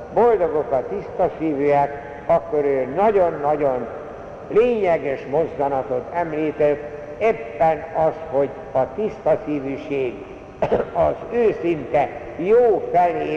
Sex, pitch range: male, 135-180 Hz